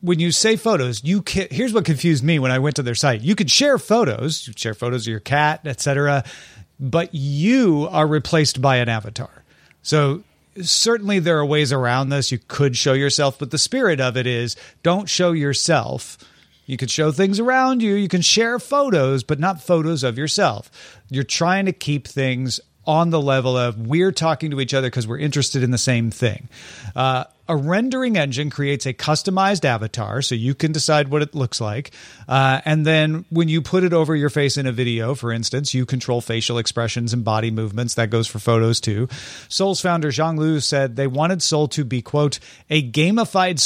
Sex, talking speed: male, 200 wpm